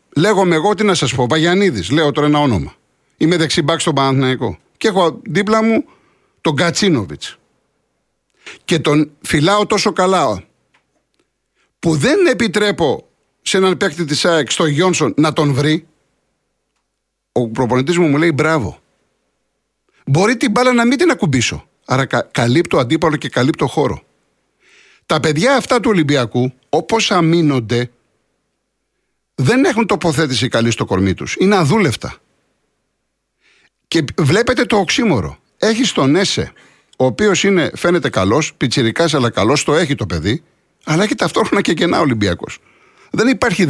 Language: Greek